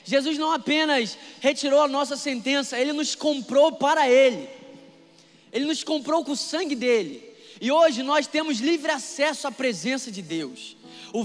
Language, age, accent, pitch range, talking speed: Portuguese, 20-39, Brazilian, 225-290 Hz, 160 wpm